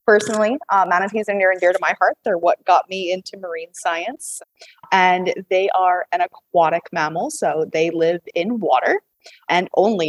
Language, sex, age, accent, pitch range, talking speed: English, female, 20-39, American, 190-255 Hz, 180 wpm